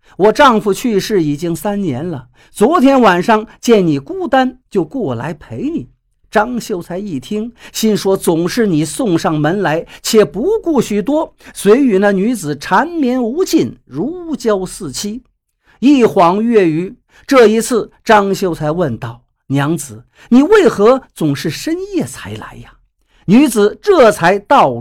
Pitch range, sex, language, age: 175-250 Hz, male, Chinese, 50-69